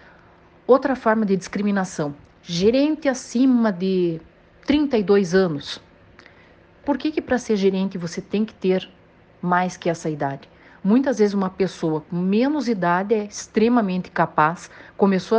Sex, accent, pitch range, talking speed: female, Brazilian, 175-225 Hz, 135 wpm